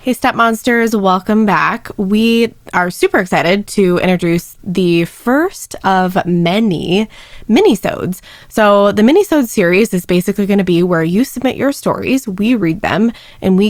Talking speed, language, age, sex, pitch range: 155 wpm, English, 20-39, female, 175-220 Hz